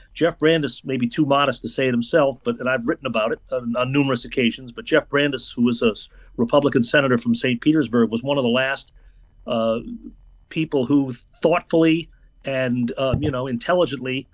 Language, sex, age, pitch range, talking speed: English, male, 40-59, 125-150 Hz, 190 wpm